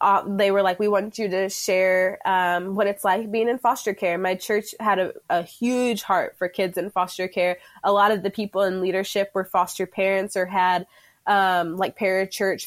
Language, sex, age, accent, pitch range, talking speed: English, female, 20-39, American, 185-215 Hz, 210 wpm